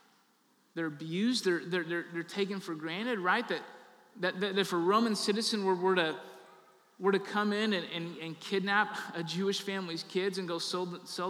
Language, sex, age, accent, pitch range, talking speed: English, male, 20-39, American, 170-205 Hz, 185 wpm